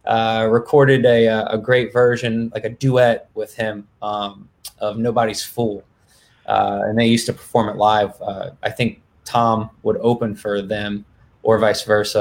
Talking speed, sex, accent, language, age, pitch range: 165 wpm, male, American, English, 20-39, 105-120 Hz